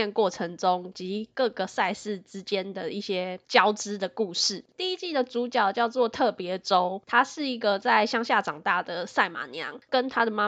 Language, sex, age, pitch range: Chinese, female, 10-29, 195-240 Hz